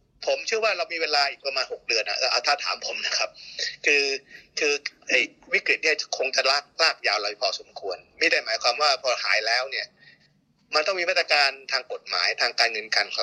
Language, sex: Thai, male